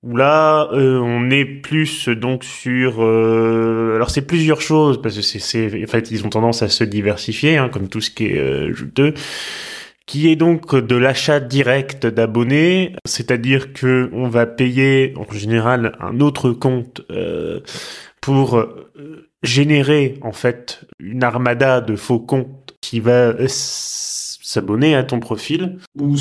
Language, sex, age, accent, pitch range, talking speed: French, male, 20-39, French, 120-145 Hz, 155 wpm